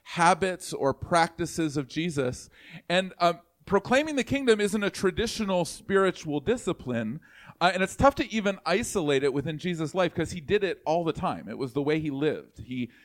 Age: 40-59